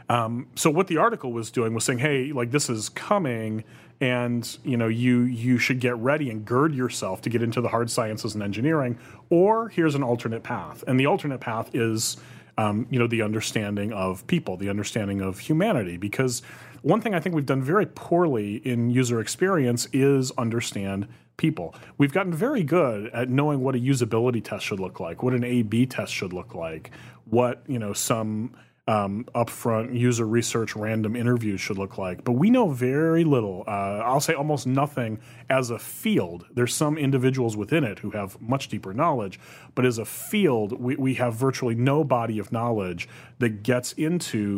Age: 30-49